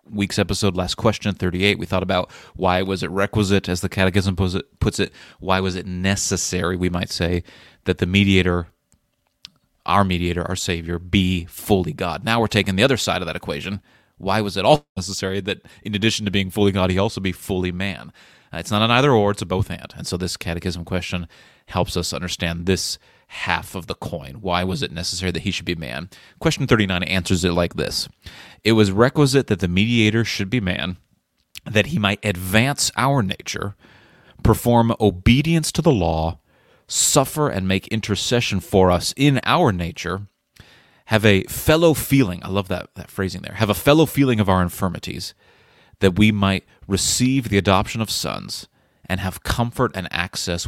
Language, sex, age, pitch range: English, male, 30-49, 90-110 Hz